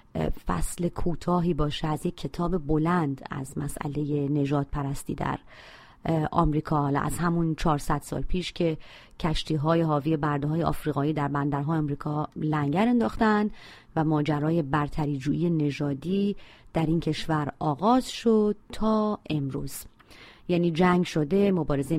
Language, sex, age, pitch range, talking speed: Persian, female, 30-49, 150-210 Hz, 120 wpm